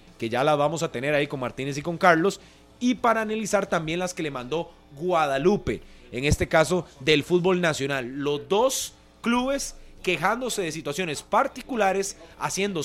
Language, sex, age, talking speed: Spanish, male, 30-49, 165 wpm